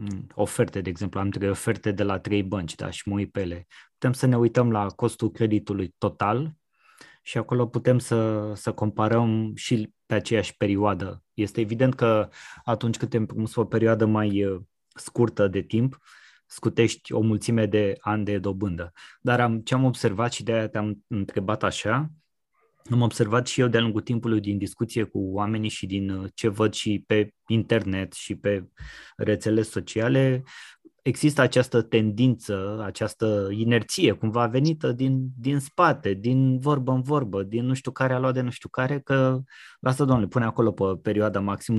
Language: Romanian